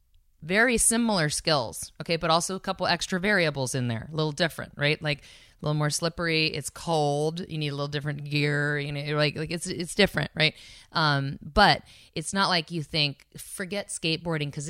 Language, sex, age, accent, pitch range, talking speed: English, female, 30-49, American, 145-180 Hz, 190 wpm